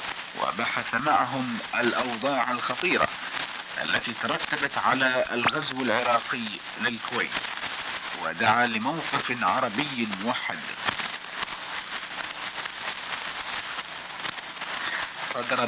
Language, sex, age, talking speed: Italian, male, 50-69, 55 wpm